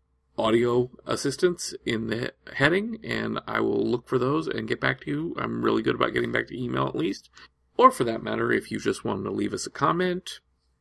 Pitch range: 105-145 Hz